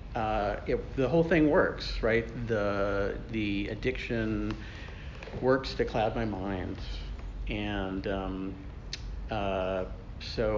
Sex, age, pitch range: male, 50-69, 100-120 Hz